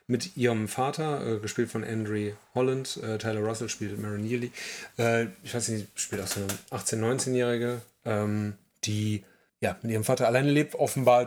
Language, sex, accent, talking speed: German, male, German, 175 wpm